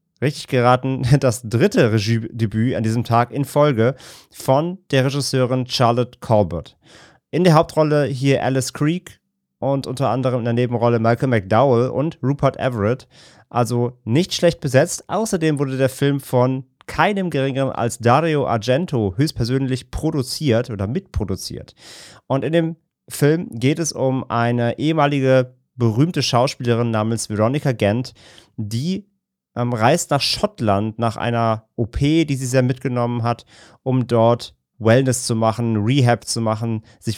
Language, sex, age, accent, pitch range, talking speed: German, male, 30-49, German, 115-140 Hz, 135 wpm